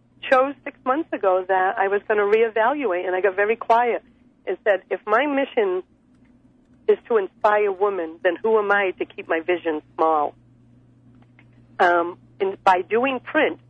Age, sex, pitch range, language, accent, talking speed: 50-69, female, 175-225 Hz, English, American, 165 wpm